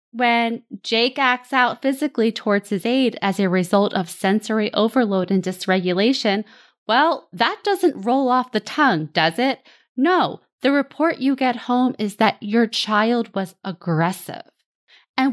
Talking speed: 150 wpm